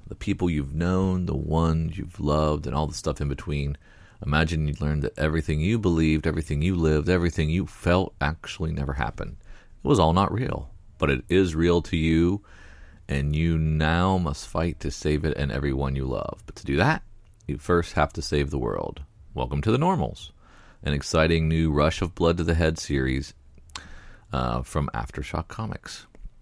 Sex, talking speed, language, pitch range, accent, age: male, 185 wpm, English, 70-85 Hz, American, 40-59